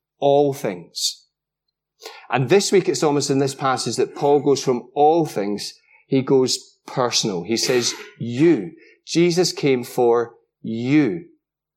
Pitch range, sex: 140-215 Hz, male